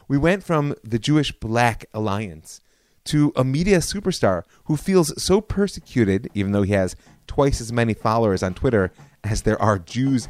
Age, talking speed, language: 30-49, 170 wpm, English